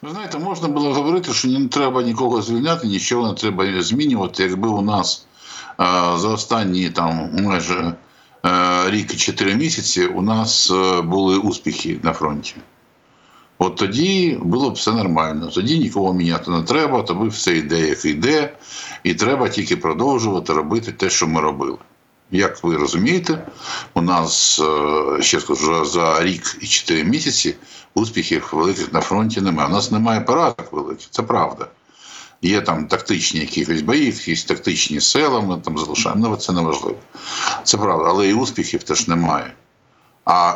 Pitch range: 90-115 Hz